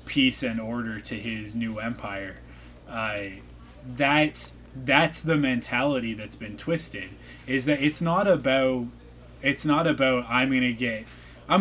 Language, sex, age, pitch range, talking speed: English, male, 20-39, 105-140 Hz, 140 wpm